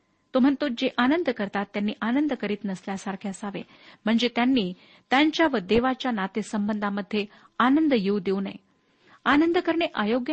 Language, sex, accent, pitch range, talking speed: Marathi, female, native, 205-270 Hz, 135 wpm